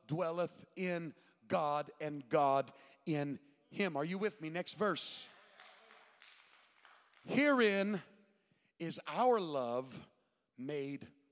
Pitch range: 145-185 Hz